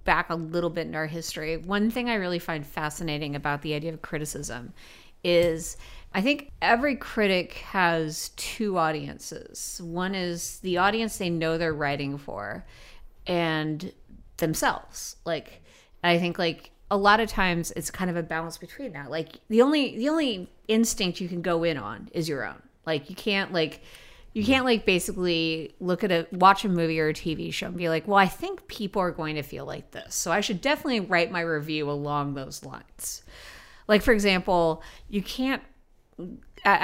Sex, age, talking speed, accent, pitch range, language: female, 30-49, 185 wpm, American, 155-195 Hz, English